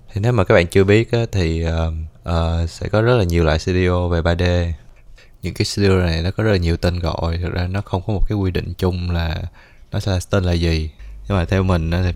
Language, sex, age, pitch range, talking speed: Vietnamese, male, 20-39, 85-95 Hz, 265 wpm